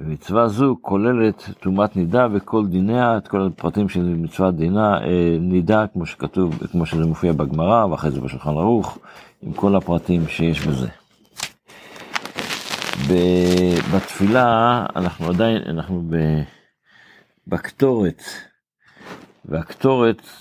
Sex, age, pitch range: male, 50-69, 85-110 Hz